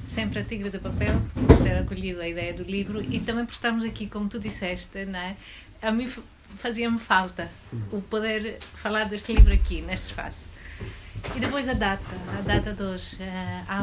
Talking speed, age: 185 wpm, 30-49